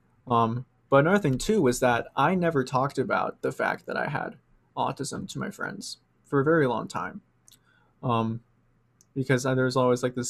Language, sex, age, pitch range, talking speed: English, male, 20-39, 120-135 Hz, 180 wpm